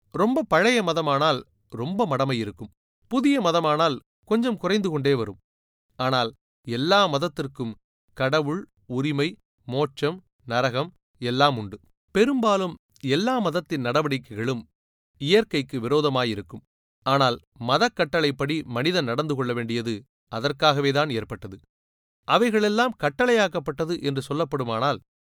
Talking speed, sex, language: 90 wpm, male, Tamil